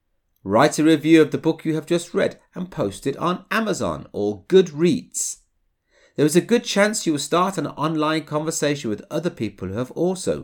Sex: male